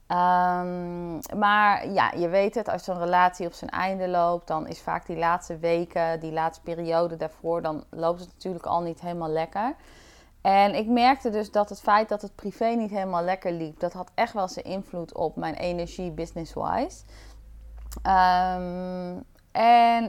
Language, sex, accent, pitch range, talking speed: Dutch, female, Dutch, 170-215 Hz, 170 wpm